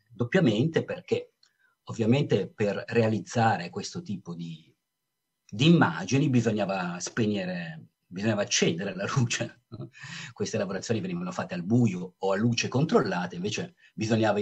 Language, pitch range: Italian, 105-145 Hz